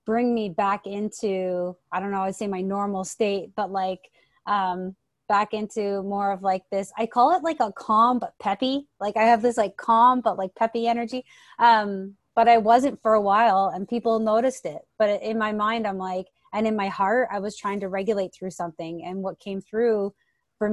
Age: 20-39